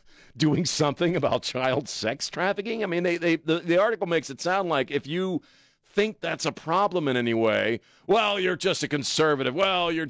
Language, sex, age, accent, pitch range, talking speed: English, male, 40-59, American, 115-175 Hz, 195 wpm